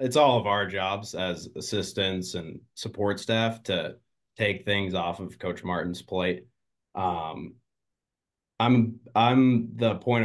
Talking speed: 135 wpm